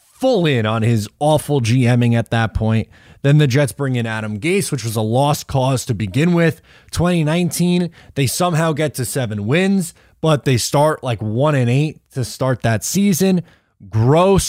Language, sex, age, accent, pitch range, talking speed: English, male, 20-39, American, 115-165 Hz, 180 wpm